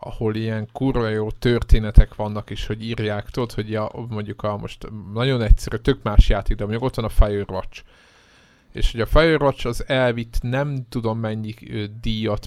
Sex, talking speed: male, 175 wpm